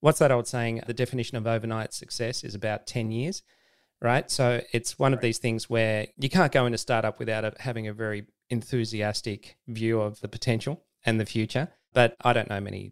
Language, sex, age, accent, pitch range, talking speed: English, male, 30-49, Australian, 105-120 Hz, 200 wpm